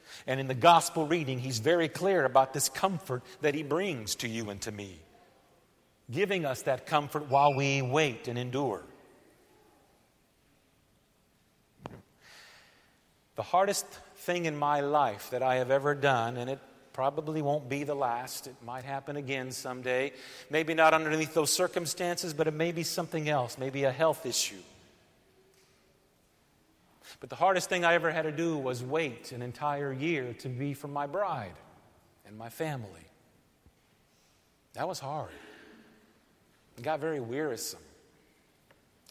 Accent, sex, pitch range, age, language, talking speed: American, male, 125-170 Hz, 40-59, English, 145 wpm